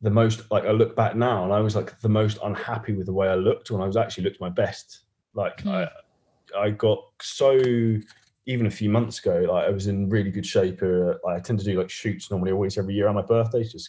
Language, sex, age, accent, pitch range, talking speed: English, male, 20-39, British, 95-110 Hz, 250 wpm